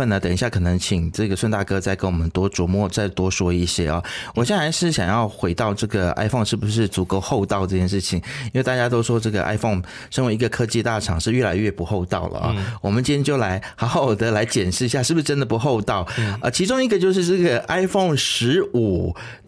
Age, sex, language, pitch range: 30-49, male, Chinese, 100-140 Hz